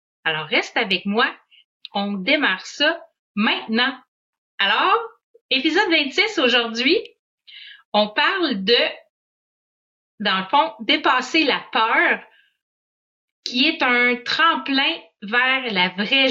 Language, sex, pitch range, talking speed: French, female, 210-280 Hz, 105 wpm